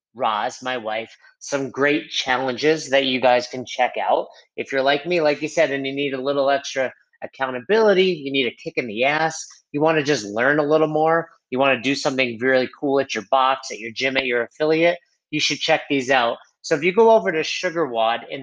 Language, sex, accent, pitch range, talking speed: English, male, American, 125-155 Hz, 230 wpm